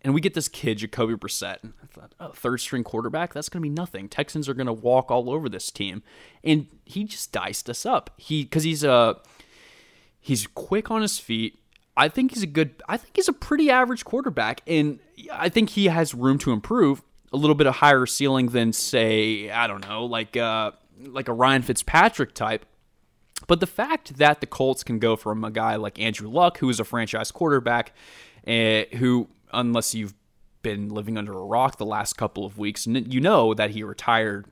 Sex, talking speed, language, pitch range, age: male, 210 wpm, English, 110-145 Hz, 20-39